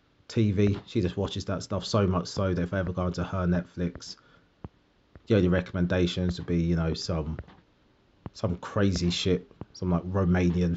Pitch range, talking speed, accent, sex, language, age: 90-115 Hz, 180 wpm, British, male, English, 30-49